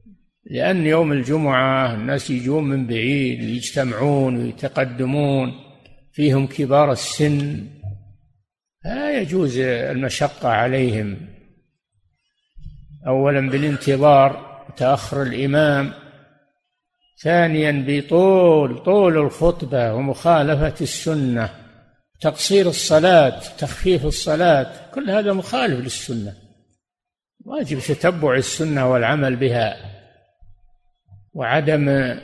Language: Arabic